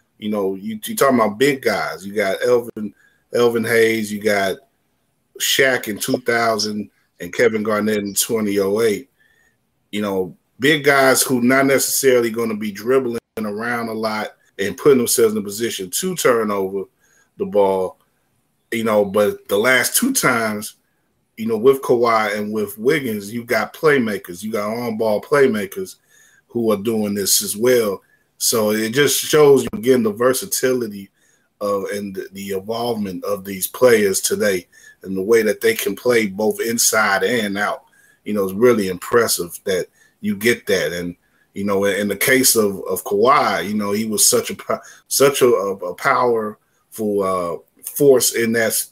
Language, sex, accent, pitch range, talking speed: English, male, American, 105-145 Hz, 165 wpm